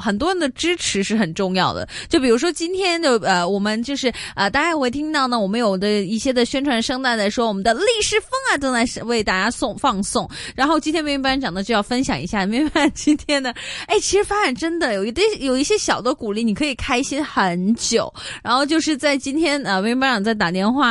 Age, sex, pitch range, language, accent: 20-39, female, 215-315 Hz, Chinese, native